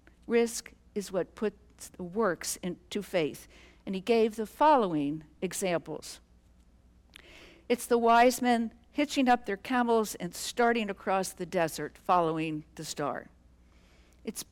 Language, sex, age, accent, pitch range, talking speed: English, female, 60-79, American, 160-230 Hz, 125 wpm